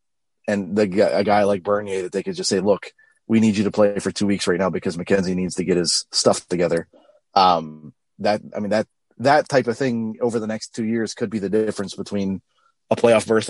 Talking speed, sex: 230 wpm, male